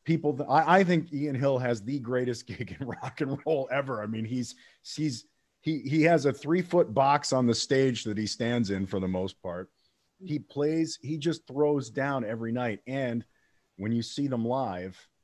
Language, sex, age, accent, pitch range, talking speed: English, male, 40-59, American, 90-125 Hz, 205 wpm